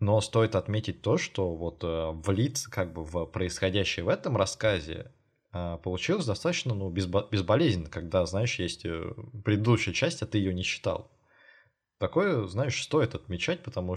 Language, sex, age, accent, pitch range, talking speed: Russian, male, 20-39, native, 90-120 Hz, 150 wpm